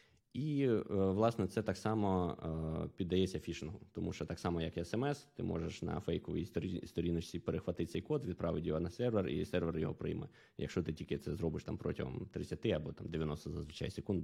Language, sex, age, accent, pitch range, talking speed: Ukrainian, male, 20-39, native, 85-100 Hz, 180 wpm